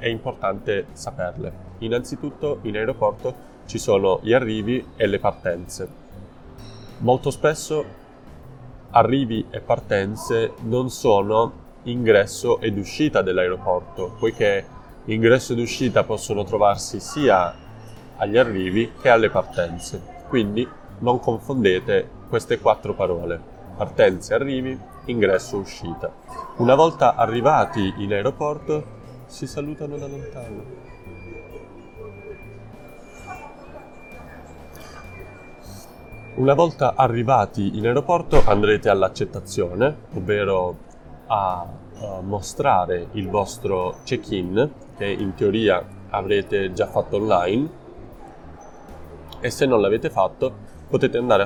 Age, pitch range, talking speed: 20-39, 100-140 Hz, 95 wpm